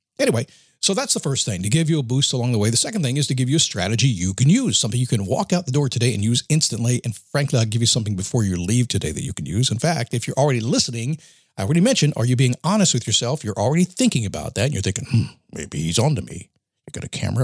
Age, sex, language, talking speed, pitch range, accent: 50-69, male, English, 290 wpm, 115-150 Hz, American